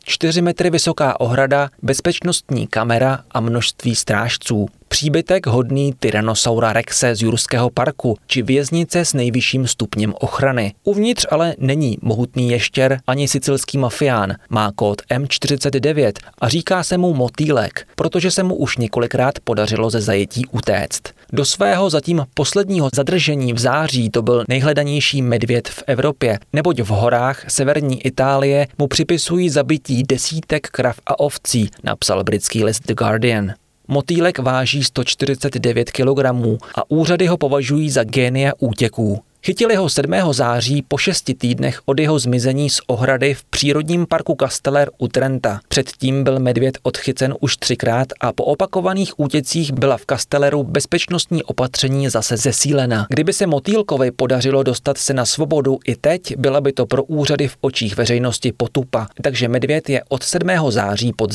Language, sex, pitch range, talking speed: Czech, male, 120-145 Hz, 145 wpm